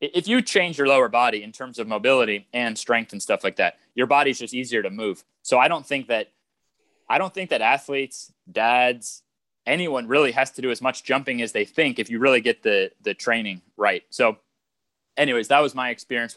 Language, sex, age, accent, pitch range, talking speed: English, male, 20-39, American, 115-140 Hz, 215 wpm